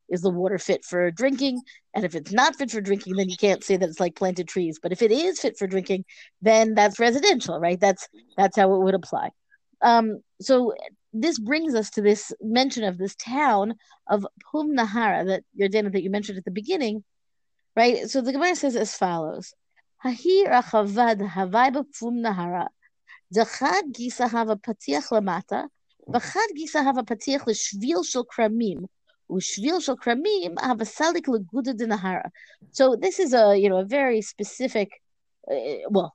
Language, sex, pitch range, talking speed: English, female, 190-255 Hz, 140 wpm